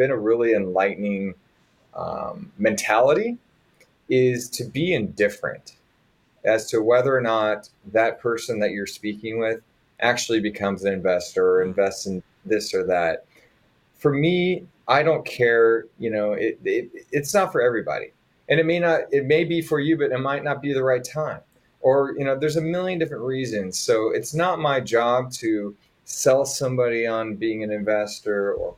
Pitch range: 105-160 Hz